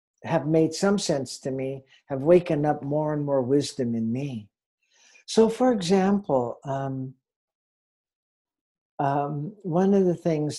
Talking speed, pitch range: 135 wpm, 135-175 Hz